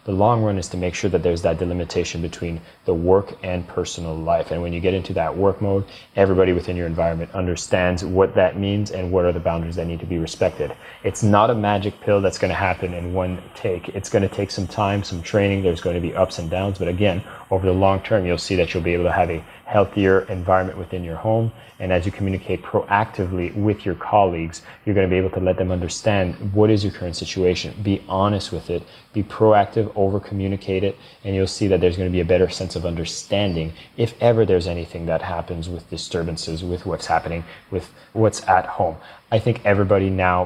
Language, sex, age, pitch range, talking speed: English, male, 30-49, 90-100 Hz, 225 wpm